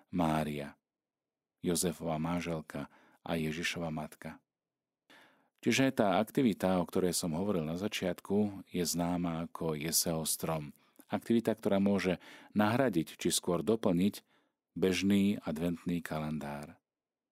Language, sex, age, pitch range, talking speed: Slovak, male, 40-59, 80-95 Hz, 105 wpm